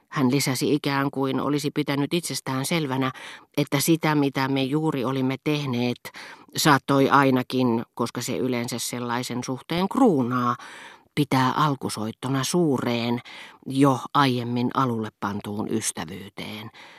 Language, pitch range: Finnish, 125-155 Hz